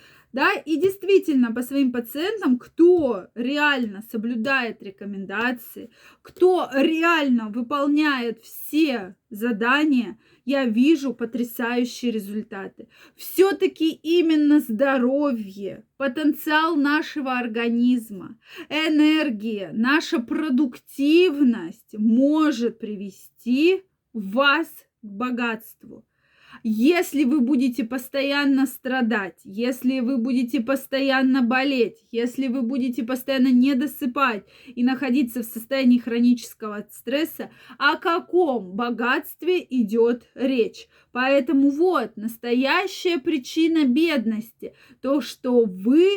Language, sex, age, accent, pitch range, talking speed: Russian, female, 20-39, native, 235-290 Hz, 90 wpm